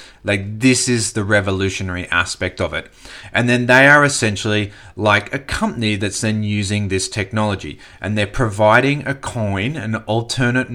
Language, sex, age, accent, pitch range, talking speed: English, male, 30-49, Australian, 100-120 Hz, 155 wpm